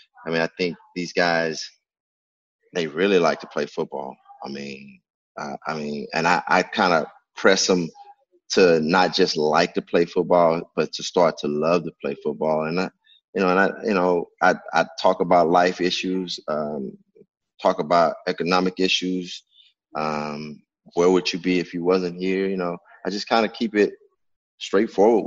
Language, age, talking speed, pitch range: English, 20-39, 180 wpm, 90-110 Hz